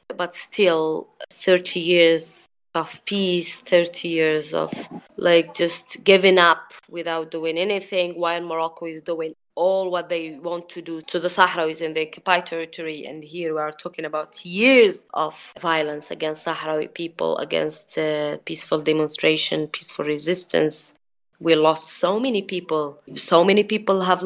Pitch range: 165-195 Hz